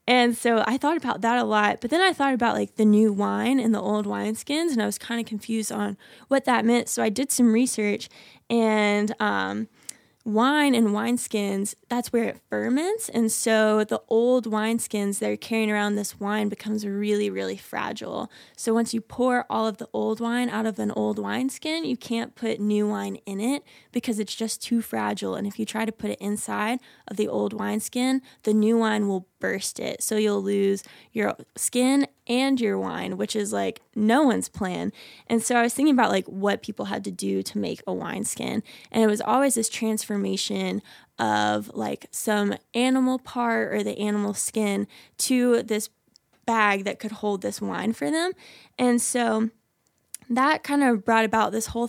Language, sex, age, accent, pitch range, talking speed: English, female, 10-29, American, 205-235 Hz, 195 wpm